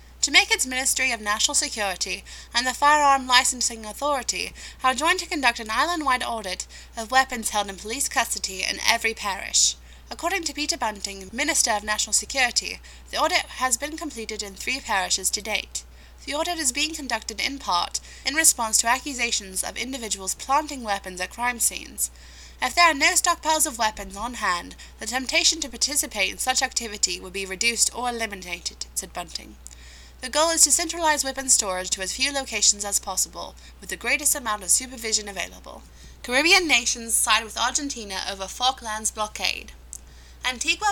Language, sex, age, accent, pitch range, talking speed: English, female, 20-39, British, 195-285 Hz, 170 wpm